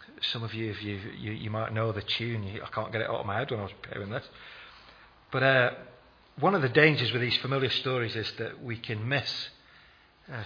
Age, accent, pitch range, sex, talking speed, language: 40-59, British, 110-135 Hz, male, 225 wpm, English